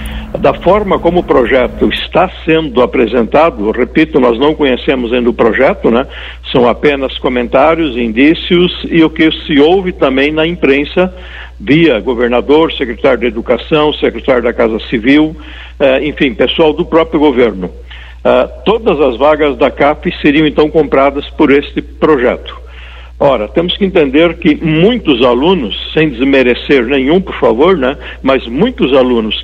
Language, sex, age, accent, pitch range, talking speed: Portuguese, male, 60-79, Brazilian, 130-170 Hz, 145 wpm